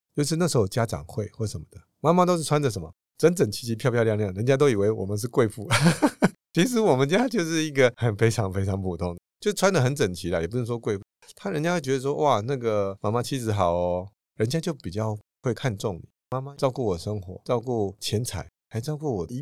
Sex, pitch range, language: male, 100-135 Hz, Chinese